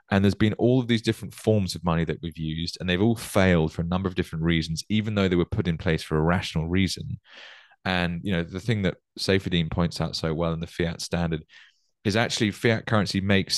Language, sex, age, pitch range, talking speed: English, male, 20-39, 85-100 Hz, 240 wpm